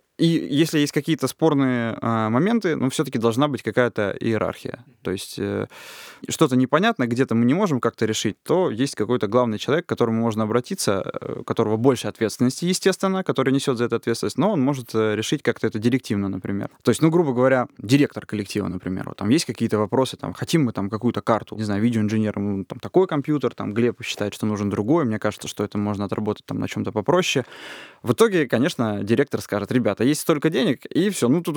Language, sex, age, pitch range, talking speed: Russian, male, 20-39, 110-145 Hz, 205 wpm